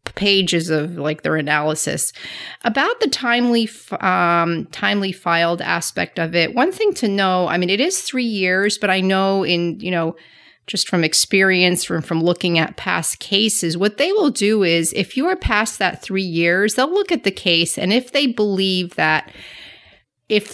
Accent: American